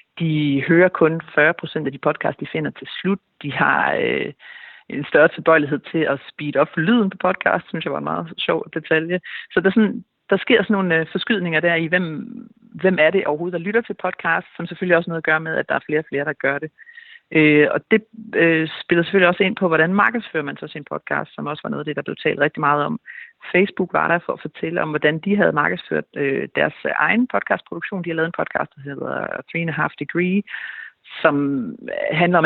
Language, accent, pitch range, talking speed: Danish, native, 150-200 Hz, 225 wpm